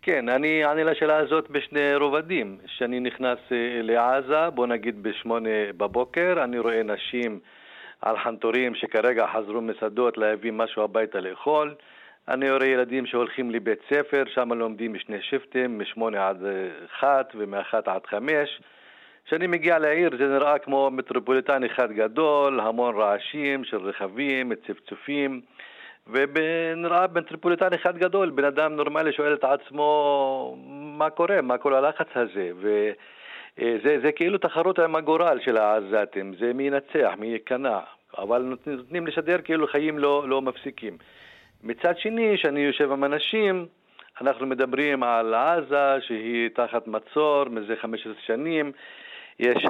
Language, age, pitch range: Hebrew, 50-69, 115-155 Hz